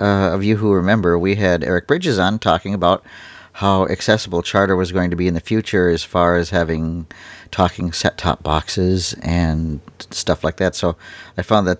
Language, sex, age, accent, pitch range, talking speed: English, male, 50-69, American, 90-105 Hz, 190 wpm